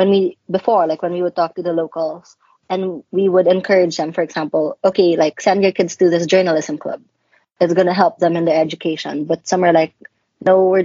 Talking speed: 225 wpm